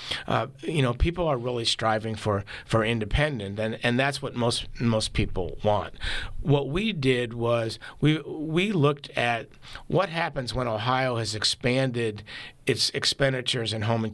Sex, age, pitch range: male, 50-69, 115-145 Hz